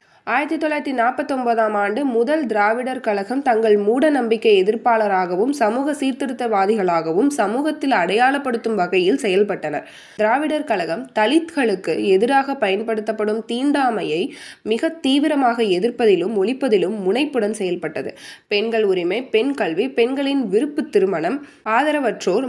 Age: 20-39